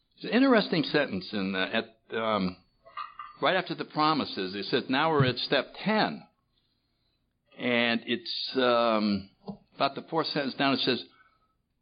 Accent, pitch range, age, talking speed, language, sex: American, 110-155 Hz, 60-79, 145 wpm, English, male